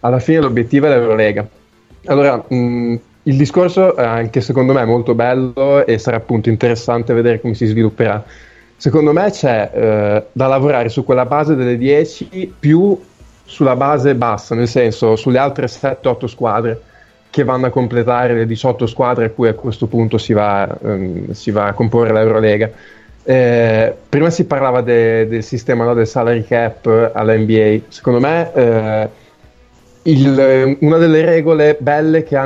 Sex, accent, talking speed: male, native, 165 wpm